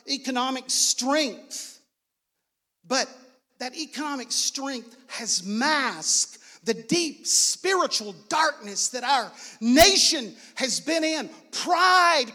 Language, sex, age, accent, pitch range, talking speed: English, male, 50-69, American, 230-305 Hz, 90 wpm